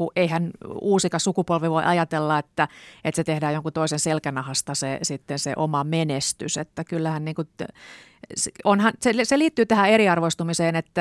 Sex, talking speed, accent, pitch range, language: female, 145 wpm, native, 150-180 Hz, Finnish